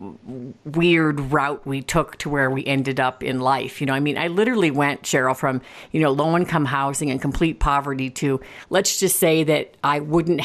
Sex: female